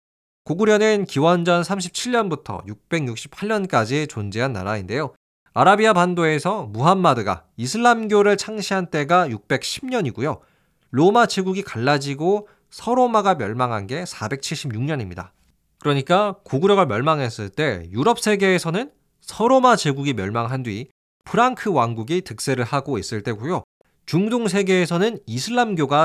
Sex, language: male, Korean